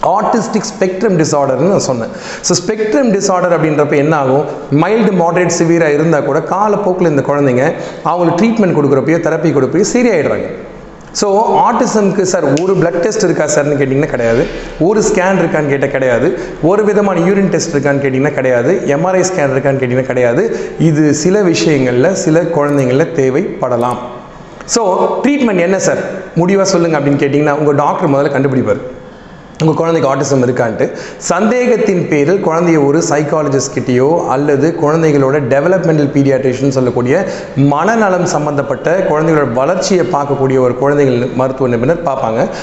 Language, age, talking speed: Tamil, 30-49, 130 wpm